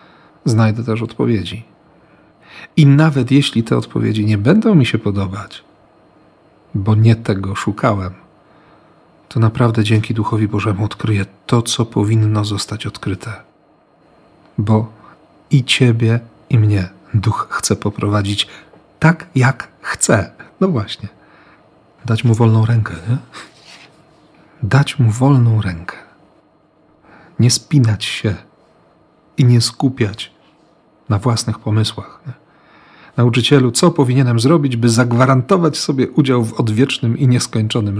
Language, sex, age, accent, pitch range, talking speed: Polish, male, 40-59, native, 110-150 Hz, 110 wpm